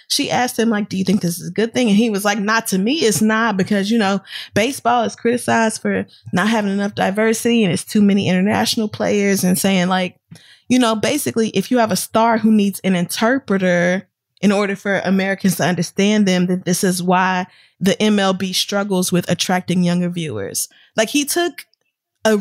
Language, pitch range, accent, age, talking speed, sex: English, 180-220 Hz, American, 20-39, 200 wpm, female